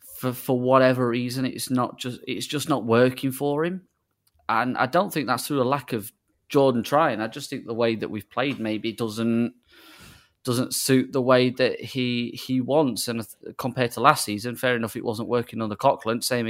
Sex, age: male, 20-39